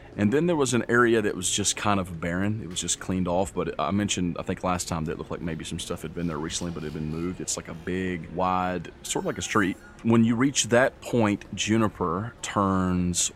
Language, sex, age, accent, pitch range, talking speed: English, male, 30-49, American, 85-105 Hz, 255 wpm